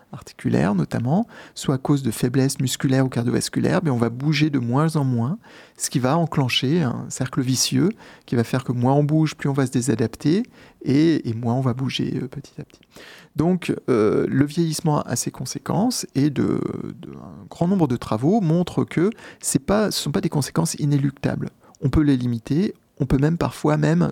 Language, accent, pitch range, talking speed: French, French, 130-160 Hz, 200 wpm